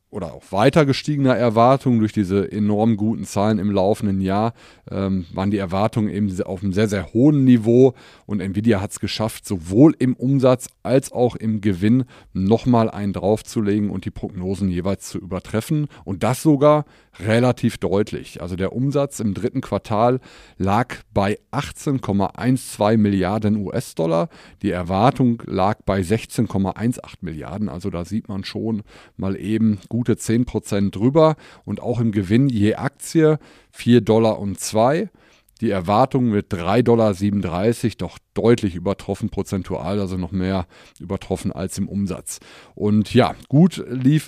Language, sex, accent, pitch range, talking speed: German, male, German, 100-125 Hz, 150 wpm